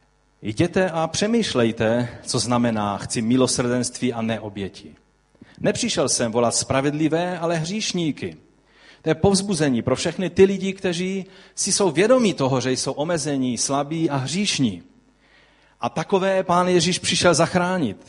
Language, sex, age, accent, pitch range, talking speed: Czech, male, 40-59, native, 130-175 Hz, 130 wpm